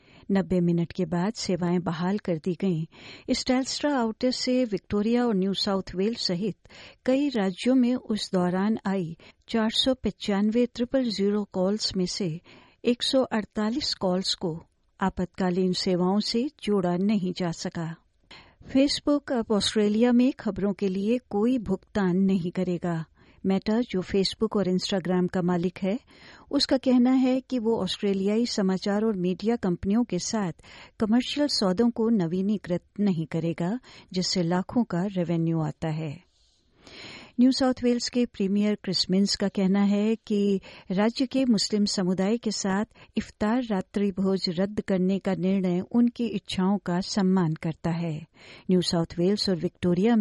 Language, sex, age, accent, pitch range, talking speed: Hindi, female, 50-69, native, 180-225 Hz, 140 wpm